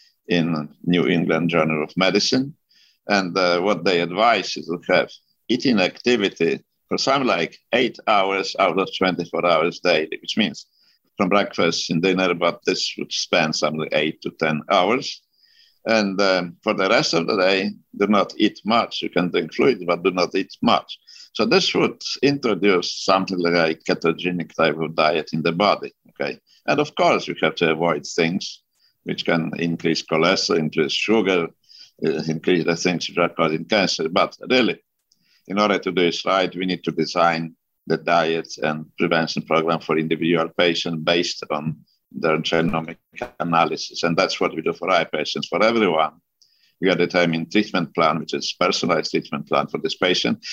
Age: 60-79